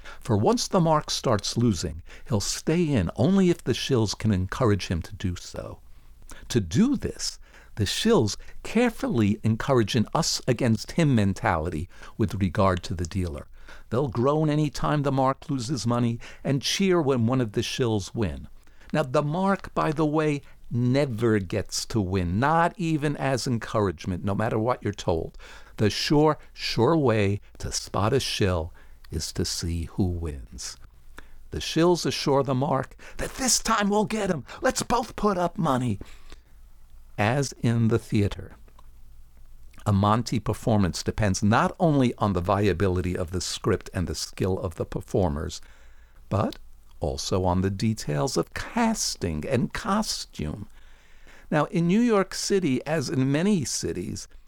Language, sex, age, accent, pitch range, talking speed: English, male, 50-69, American, 95-150 Hz, 150 wpm